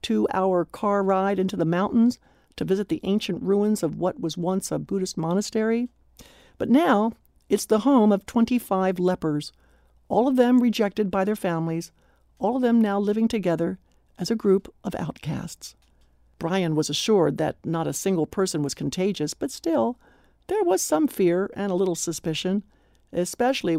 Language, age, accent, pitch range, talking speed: English, 60-79, American, 165-220 Hz, 170 wpm